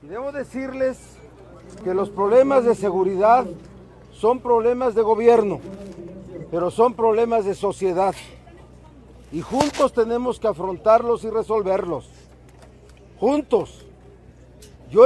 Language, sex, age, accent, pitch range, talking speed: Spanish, male, 40-59, Mexican, 180-240 Hz, 100 wpm